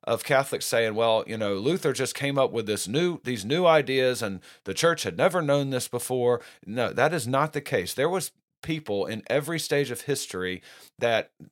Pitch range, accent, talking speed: 110-150 Hz, American, 205 wpm